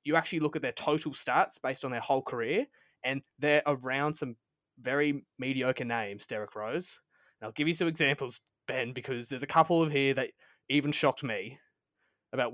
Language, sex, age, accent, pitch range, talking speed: English, male, 20-39, Australian, 130-155 Hz, 185 wpm